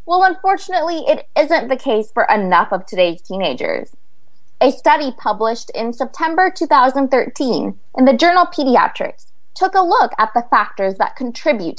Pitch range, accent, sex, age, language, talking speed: 190-295 Hz, American, female, 20-39, English, 150 wpm